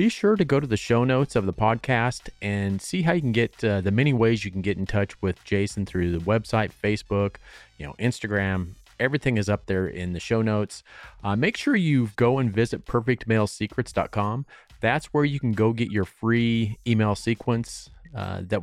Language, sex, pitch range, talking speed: English, male, 95-115 Hz, 205 wpm